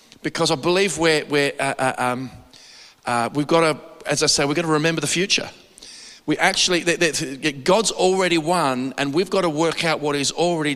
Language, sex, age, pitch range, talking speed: English, male, 40-59, 140-180 Hz, 210 wpm